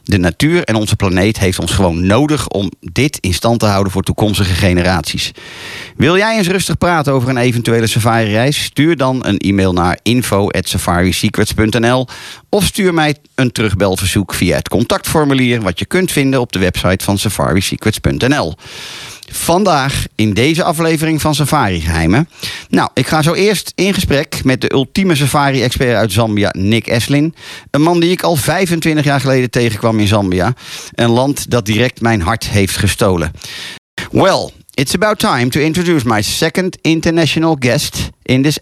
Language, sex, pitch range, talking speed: Dutch, male, 105-150 Hz, 165 wpm